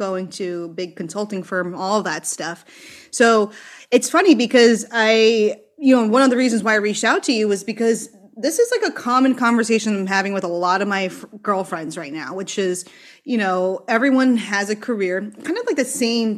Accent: American